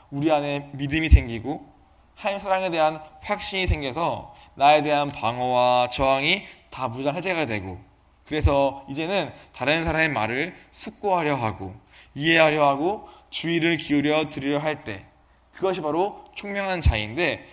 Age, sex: 20-39, male